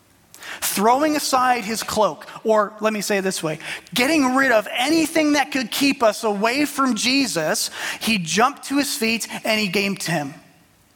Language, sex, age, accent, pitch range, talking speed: English, male, 30-49, American, 195-265 Hz, 175 wpm